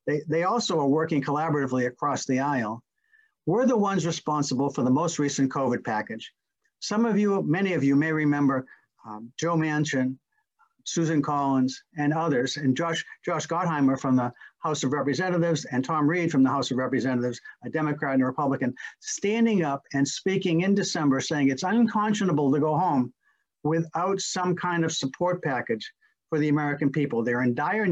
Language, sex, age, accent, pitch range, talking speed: English, male, 60-79, American, 130-170 Hz, 175 wpm